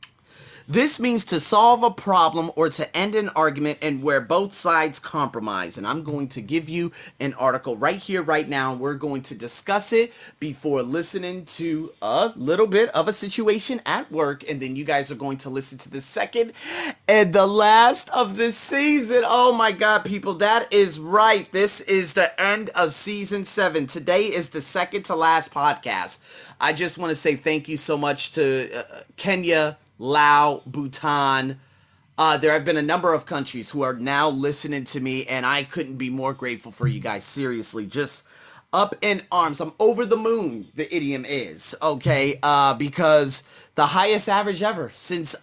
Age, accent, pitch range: 30-49, American, 140-195 Hz